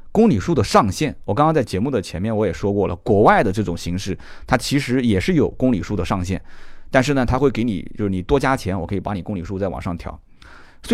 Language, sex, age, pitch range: Chinese, male, 30-49, 95-125 Hz